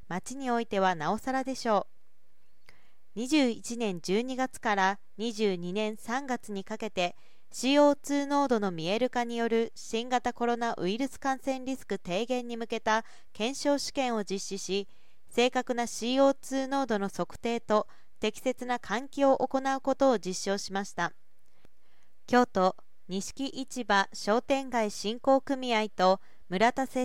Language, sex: Japanese, female